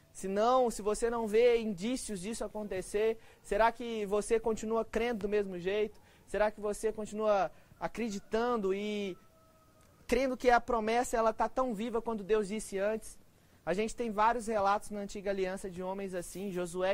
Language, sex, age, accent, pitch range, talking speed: Gujarati, male, 20-39, Brazilian, 195-225 Hz, 165 wpm